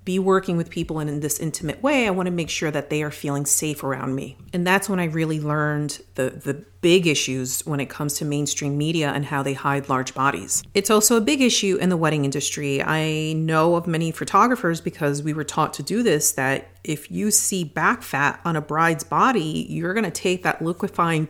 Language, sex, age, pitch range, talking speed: English, female, 40-59, 155-215 Hz, 225 wpm